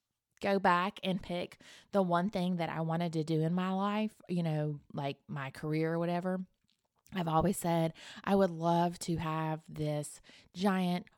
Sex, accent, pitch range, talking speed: female, American, 160-185 Hz, 170 wpm